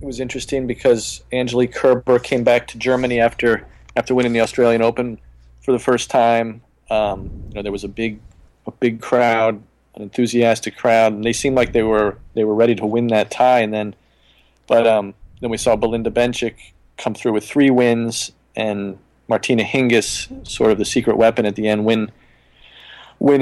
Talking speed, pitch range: 185 wpm, 100-120 Hz